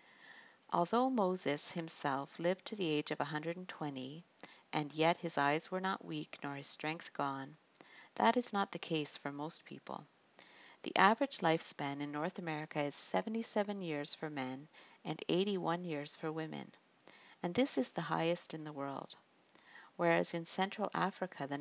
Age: 50-69